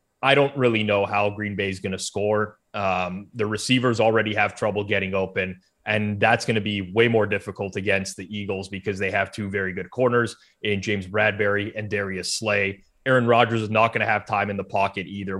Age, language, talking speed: 20-39, English, 215 wpm